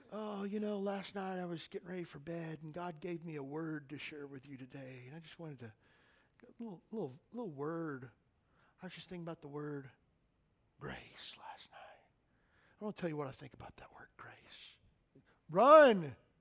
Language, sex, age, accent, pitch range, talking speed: English, male, 40-59, American, 140-180 Hz, 200 wpm